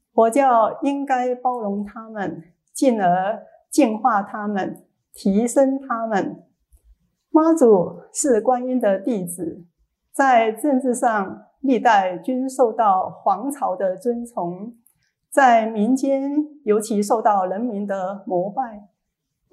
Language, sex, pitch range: Chinese, female, 205-265 Hz